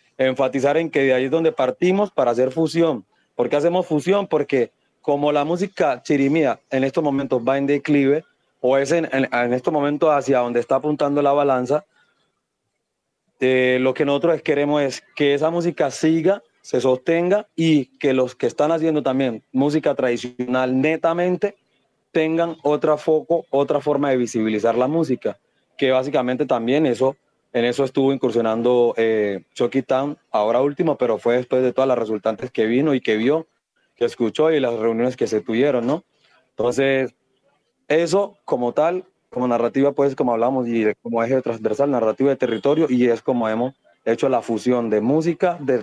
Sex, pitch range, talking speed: male, 125-155 Hz, 170 wpm